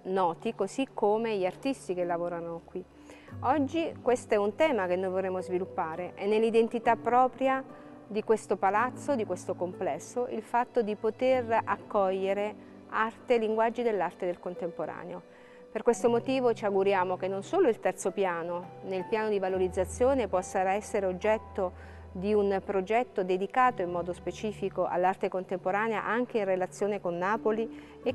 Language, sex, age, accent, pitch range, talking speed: Italian, female, 40-59, native, 180-225 Hz, 145 wpm